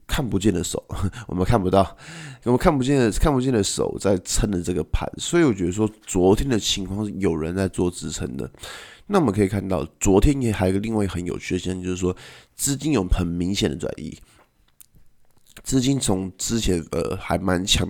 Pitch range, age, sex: 90-110 Hz, 20-39, male